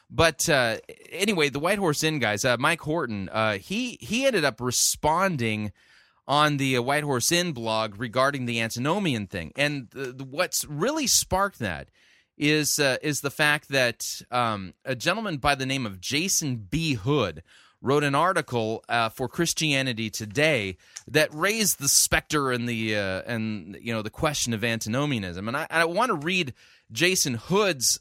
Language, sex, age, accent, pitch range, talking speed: English, male, 30-49, American, 110-150 Hz, 170 wpm